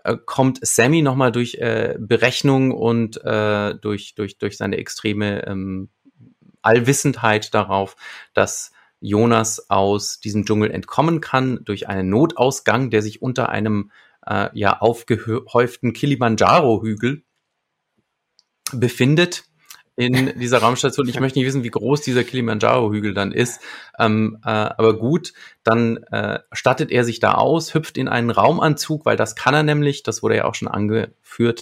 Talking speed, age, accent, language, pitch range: 140 wpm, 30-49, German, German, 105-130 Hz